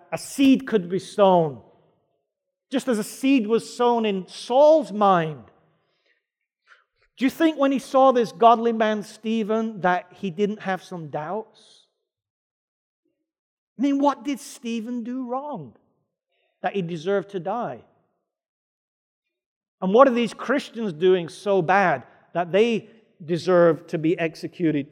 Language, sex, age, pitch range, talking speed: English, male, 50-69, 170-225 Hz, 135 wpm